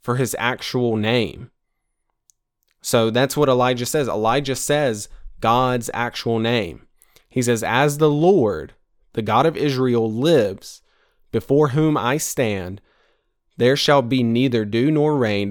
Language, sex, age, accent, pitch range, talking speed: English, male, 20-39, American, 115-145 Hz, 135 wpm